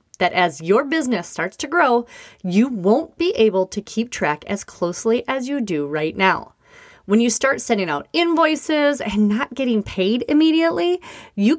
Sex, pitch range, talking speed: female, 190-285 Hz, 170 wpm